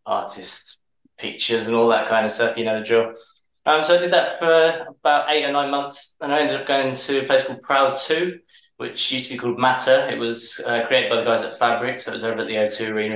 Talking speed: 260 wpm